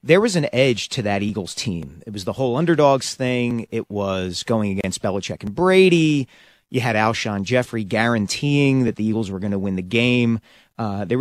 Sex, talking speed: male, 200 wpm